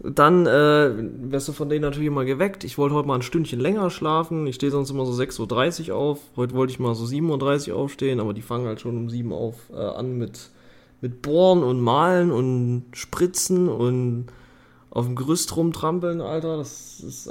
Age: 20-39